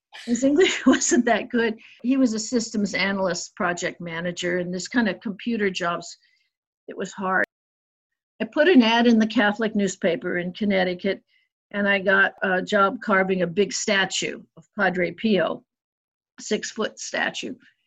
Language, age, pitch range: English, 50-69, 185-230 Hz